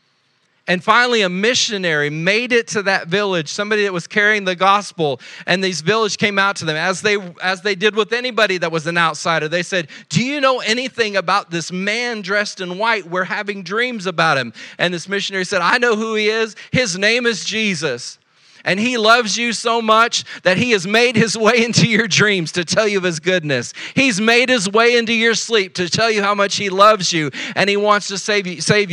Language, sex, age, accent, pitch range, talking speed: English, male, 40-59, American, 180-230 Hz, 220 wpm